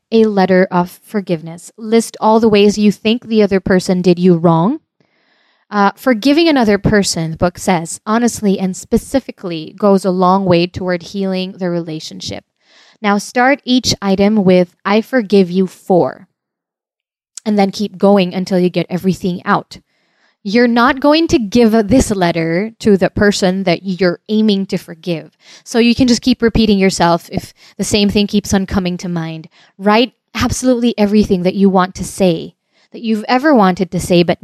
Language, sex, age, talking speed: English, female, 20-39, 170 wpm